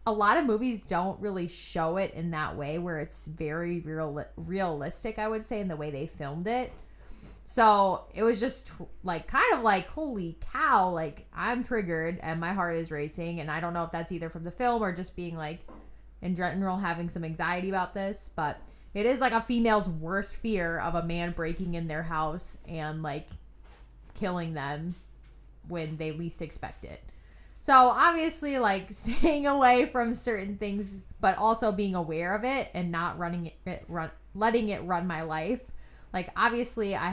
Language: English